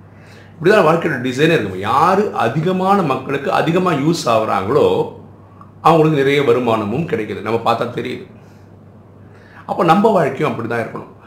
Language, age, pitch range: Tamil, 50-69, 100-125 Hz